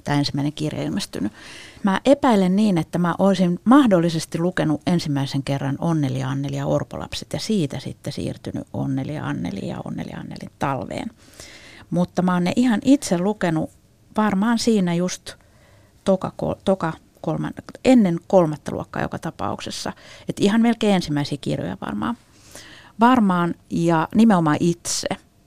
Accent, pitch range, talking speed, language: native, 160-215 Hz, 130 wpm, Finnish